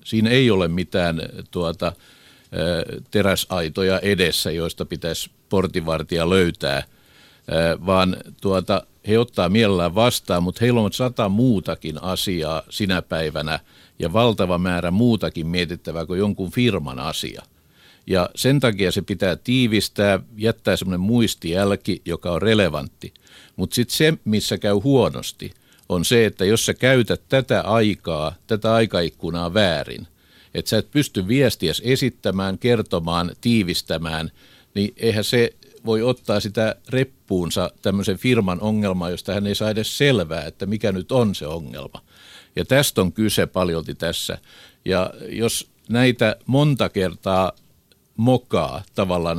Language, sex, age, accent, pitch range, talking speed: Finnish, male, 50-69, native, 90-115 Hz, 130 wpm